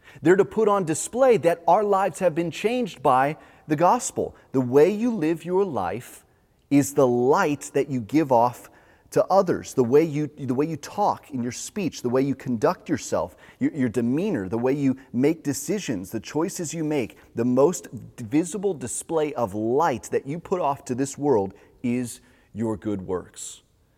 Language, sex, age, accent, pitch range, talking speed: English, male, 30-49, American, 105-145 Hz, 180 wpm